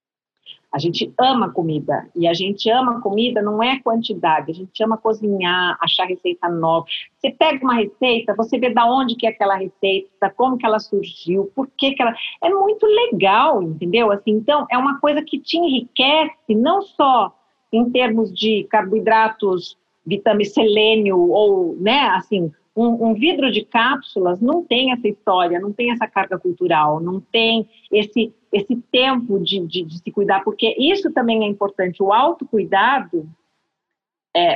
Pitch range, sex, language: 195-255 Hz, female, Portuguese